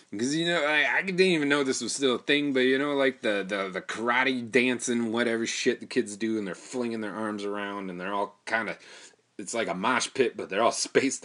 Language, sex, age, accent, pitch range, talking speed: English, male, 30-49, American, 115-150 Hz, 250 wpm